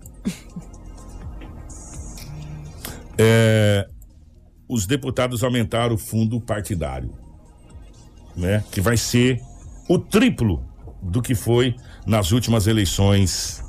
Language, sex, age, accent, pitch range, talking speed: Portuguese, male, 60-79, Brazilian, 90-145 Hz, 85 wpm